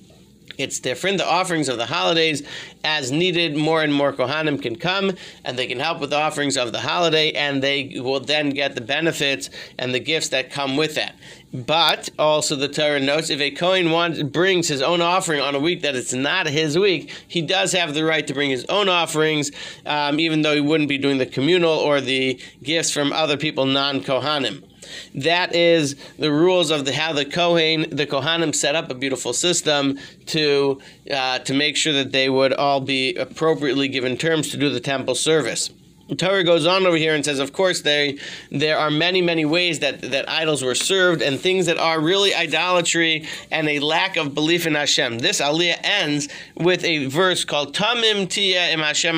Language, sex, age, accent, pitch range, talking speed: English, male, 40-59, American, 140-170 Hz, 200 wpm